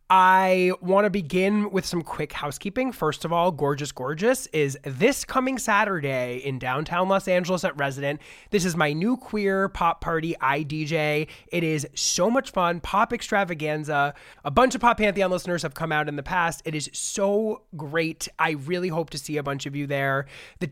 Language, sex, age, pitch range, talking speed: English, male, 20-39, 140-195 Hz, 190 wpm